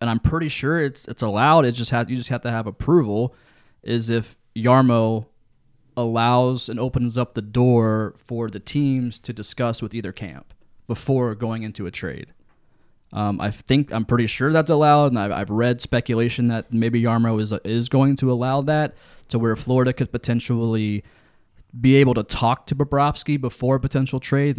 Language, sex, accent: English, male, American